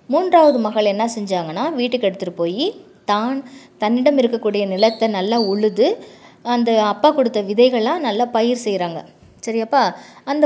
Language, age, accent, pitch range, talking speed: English, 20-39, Indian, 200-255 Hz, 120 wpm